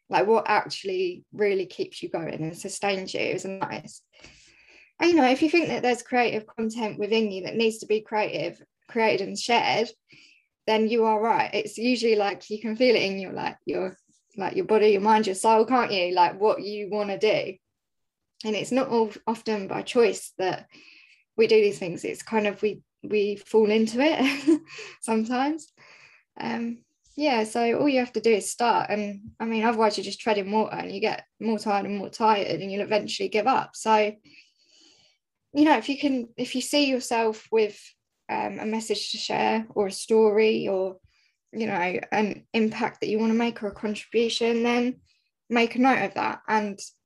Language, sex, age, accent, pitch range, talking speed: English, female, 10-29, British, 210-245 Hz, 195 wpm